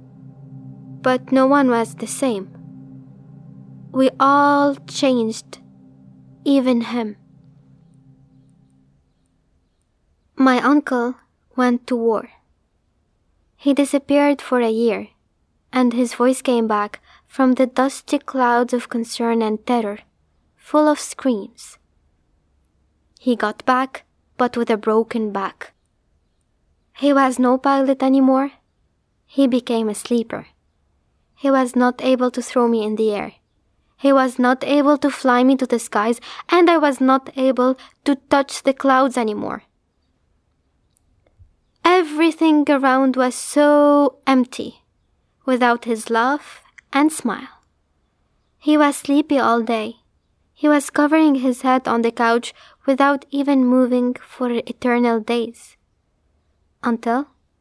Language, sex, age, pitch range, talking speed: English, female, 20-39, 215-275 Hz, 120 wpm